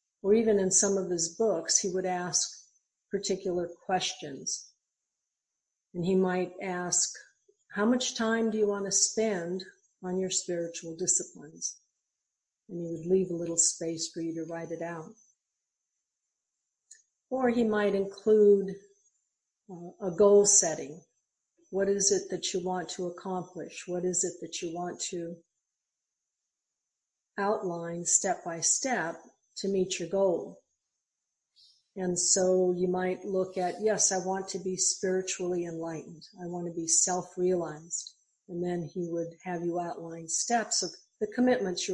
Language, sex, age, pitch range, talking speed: English, female, 50-69, 170-205 Hz, 145 wpm